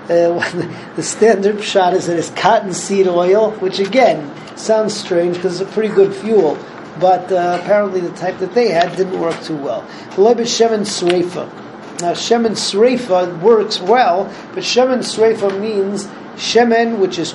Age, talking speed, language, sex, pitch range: 40-59, 165 wpm, English, male, 180-215 Hz